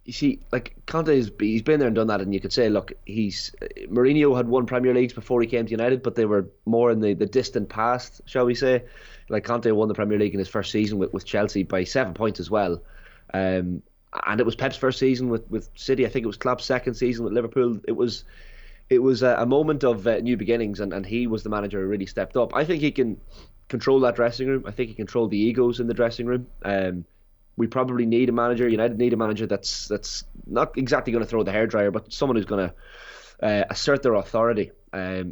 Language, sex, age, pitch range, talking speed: English, male, 20-39, 100-125 Hz, 240 wpm